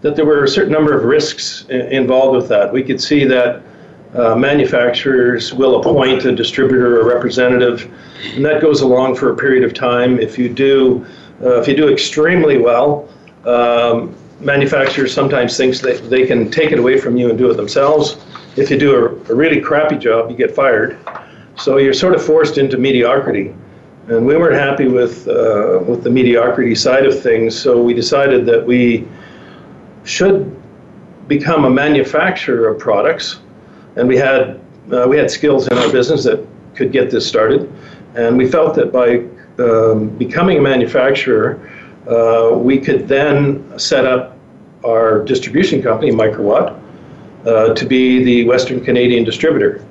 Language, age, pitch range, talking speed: English, 50-69, 120-140 Hz, 170 wpm